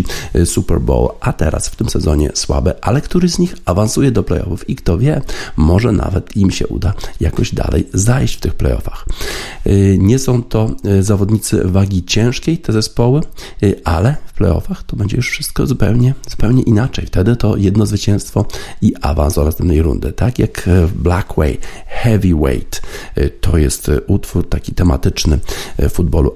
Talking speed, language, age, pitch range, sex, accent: 150 wpm, Polish, 50-69, 85-105 Hz, male, native